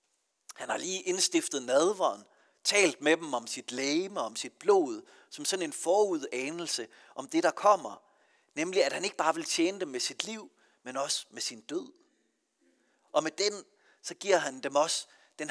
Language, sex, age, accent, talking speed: Danish, male, 40-59, native, 180 wpm